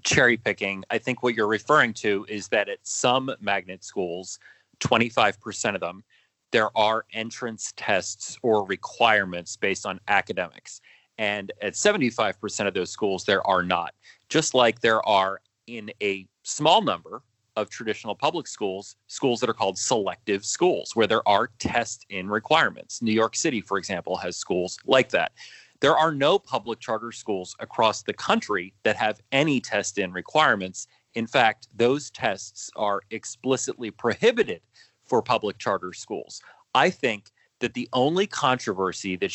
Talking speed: 155 wpm